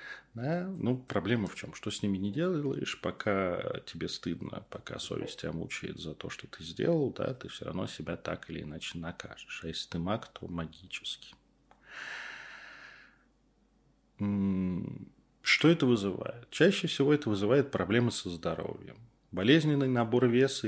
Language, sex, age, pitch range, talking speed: Russian, male, 30-49, 90-125 Hz, 140 wpm